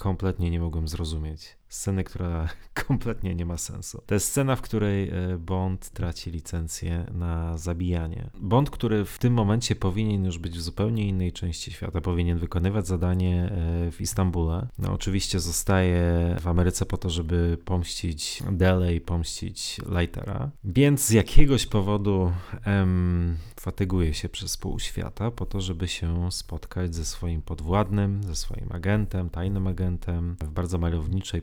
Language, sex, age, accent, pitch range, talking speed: Polish, male, 30-49, native, 85-100 Hz, 145 wpm